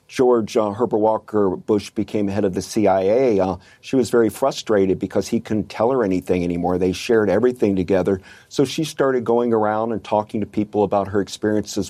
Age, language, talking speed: 50-69, English, 190 wpm